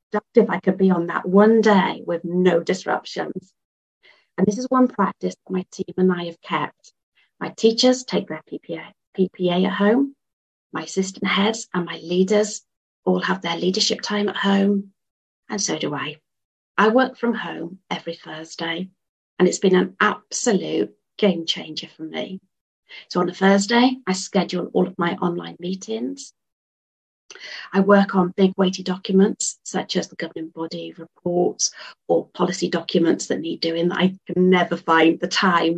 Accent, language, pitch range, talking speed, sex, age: British, English, 170-205 Hz, 165 wpm, female, 40-59